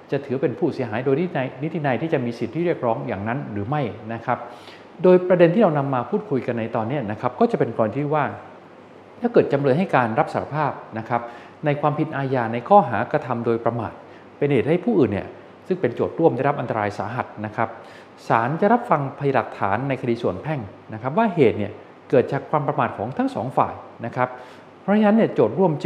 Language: Thai